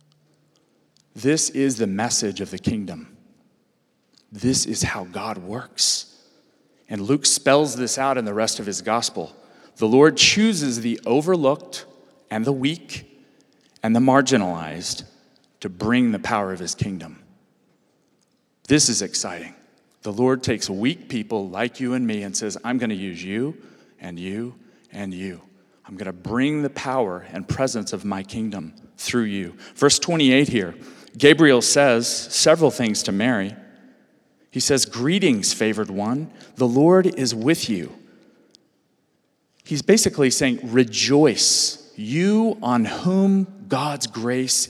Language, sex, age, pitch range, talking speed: English, male, 40-59, 115-150 Hz, 140 wpm